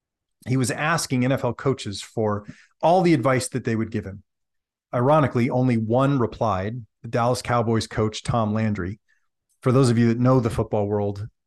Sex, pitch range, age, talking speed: male, 110-135 Hz, 40-59, 175 wpm